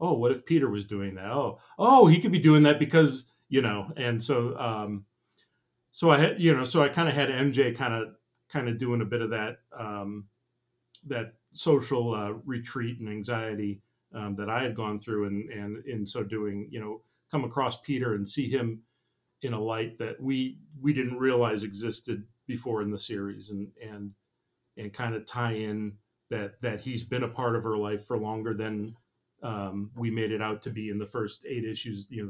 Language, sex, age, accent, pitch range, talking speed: English, male, 40-59, American, 105-130 Hz, 210 wpm